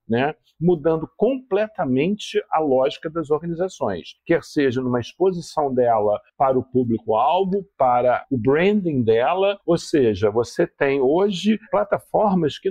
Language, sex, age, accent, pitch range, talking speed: Portuguese, male, 50-69, Brazilian, 135-195 Hz, 125 wpm